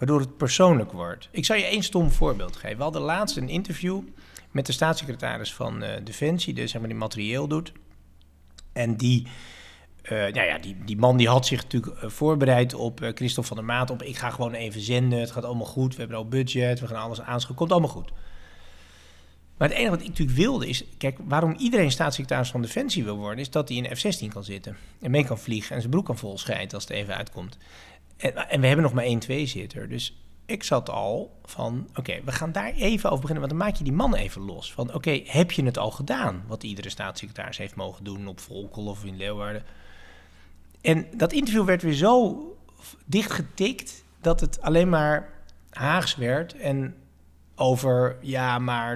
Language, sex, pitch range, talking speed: Dutch, male, 100-155 Hz, 205 wpm